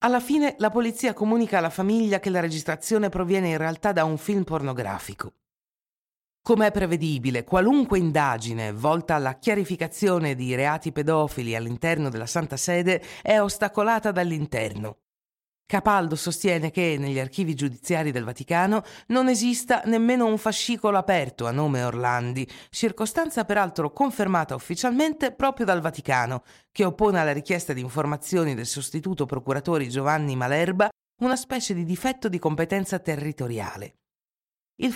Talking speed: 135 wpm